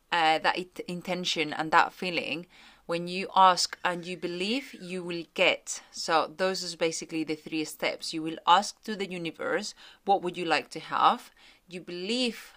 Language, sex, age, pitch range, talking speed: English, female, 30-49, 170-220 Hz, 170 wpm